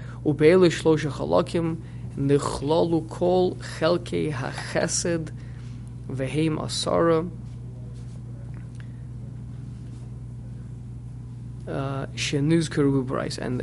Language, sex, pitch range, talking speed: English, male, 120-155 Hz, 55 wpm